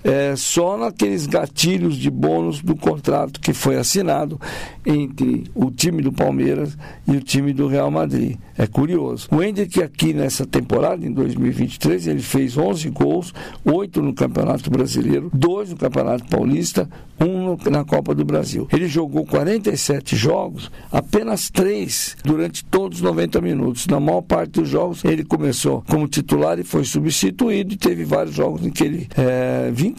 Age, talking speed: 60-79, 160 wpm